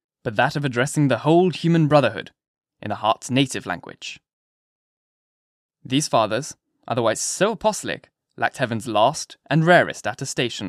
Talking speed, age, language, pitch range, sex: 135 wpm, 10-29, English, 120-155 Hz, male